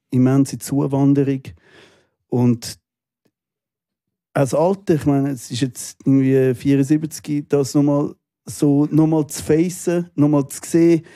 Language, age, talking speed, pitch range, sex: German, 40-59, 115 wpm, 135-155 Hz, male